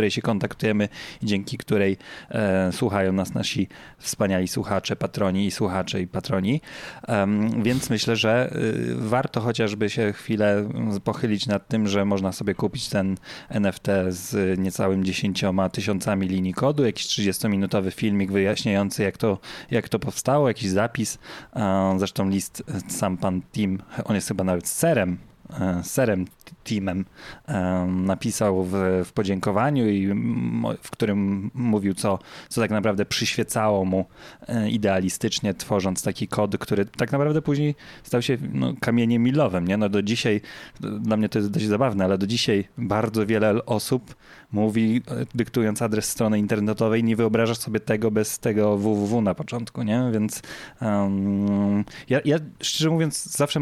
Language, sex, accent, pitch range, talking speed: Polish, male, native, 100-120 Hz, 150 wpm